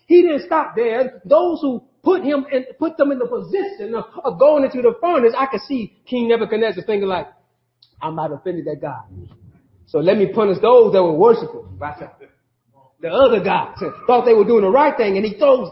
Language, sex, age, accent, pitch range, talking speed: English, male, 30-49, American, 230-300 Hz, 210 wpm